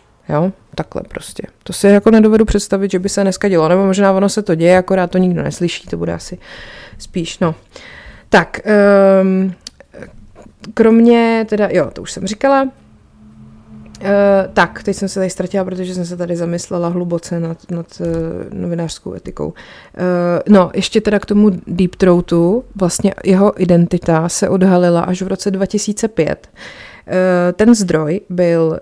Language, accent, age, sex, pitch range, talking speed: Czech, native, 30-49, female, 170-200 Hz, 150 wpm